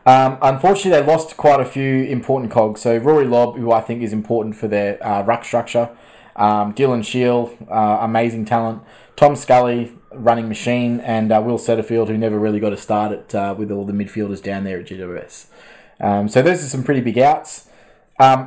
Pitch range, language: 110-140 Hz, English